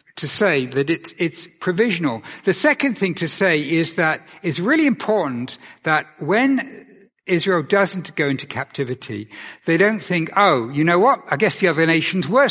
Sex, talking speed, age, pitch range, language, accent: male, 175 wpm, 60-79, 130-190 Hz, English, British